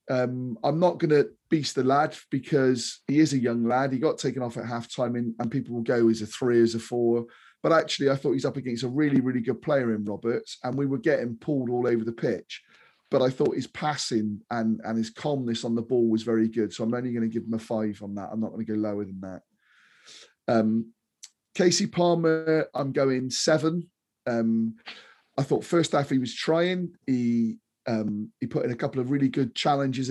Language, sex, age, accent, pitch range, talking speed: English, male, 30-49, British, 115-140 Hz, 225 wpm